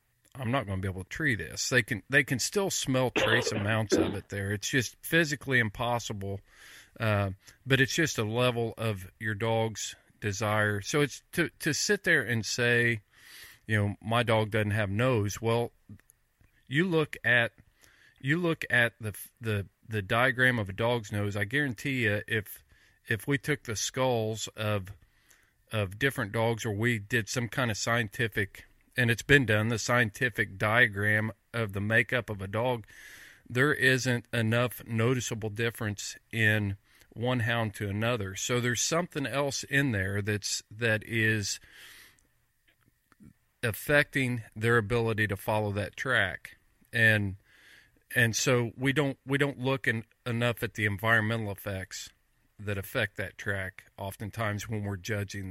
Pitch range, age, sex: 105-125 Hz, 40-59, male